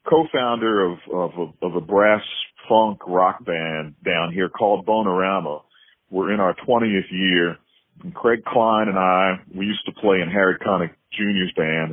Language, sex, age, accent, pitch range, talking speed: English, male, 40-59, American, 85-105 Hz, 160 wpm